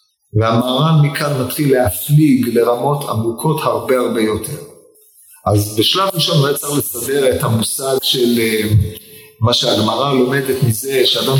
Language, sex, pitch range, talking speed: Hebrew, male, 115-150 Hz, 120 wpm